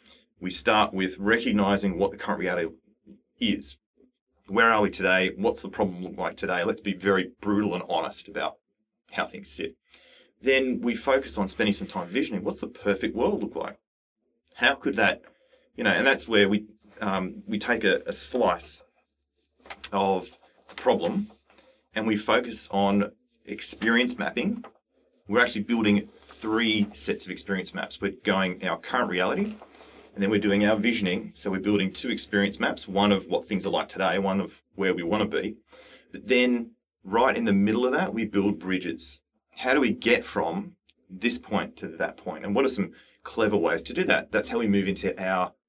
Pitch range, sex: 95-110 Hz, male